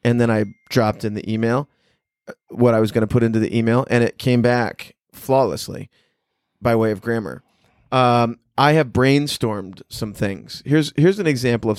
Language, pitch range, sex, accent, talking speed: English, 110-130 Hz, male, American, 185 wpm